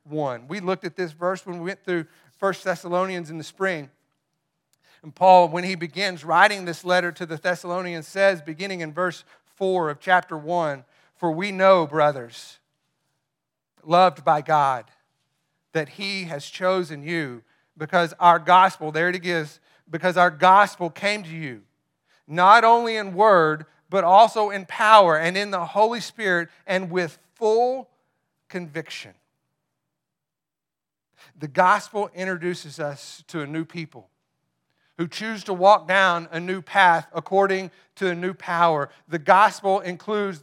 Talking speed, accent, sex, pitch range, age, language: 145 wpm, American, male, 160-190 Hz, 40-59, English